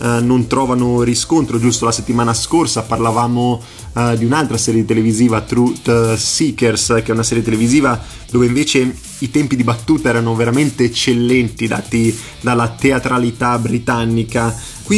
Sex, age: male, 30-49